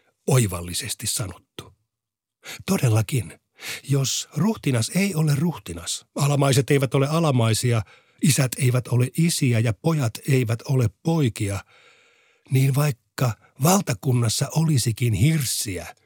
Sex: male